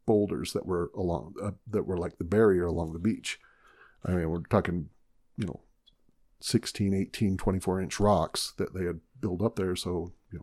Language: English